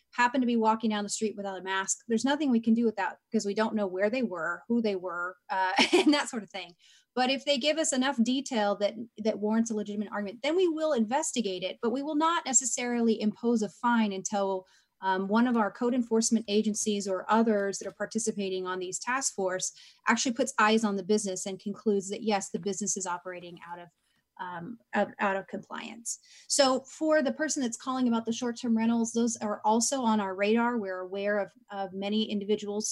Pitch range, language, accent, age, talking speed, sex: 200-235 Hz, English, American, 30-49, 215 wpm, female